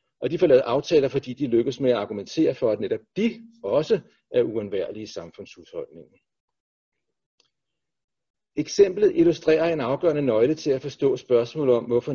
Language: Danish